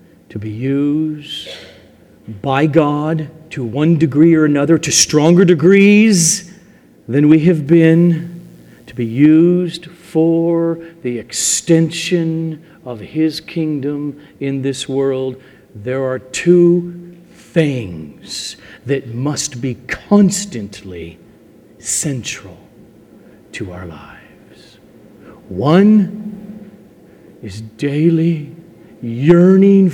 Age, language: 50-69, English